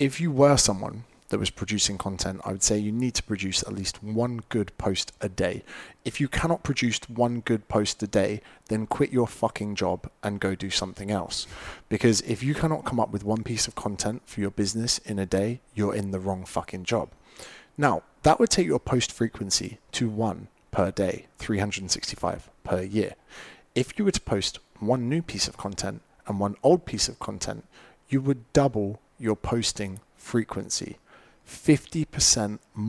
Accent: British